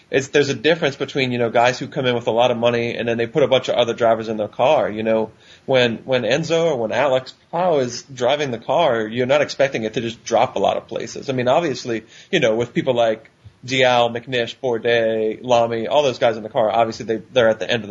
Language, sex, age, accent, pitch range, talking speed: English, male, 30-49, American, 115-140 Hz, 260 wpm